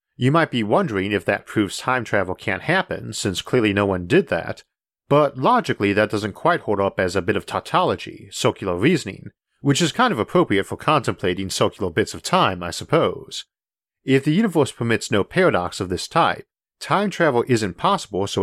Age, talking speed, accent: 40-59, 190 wpm, American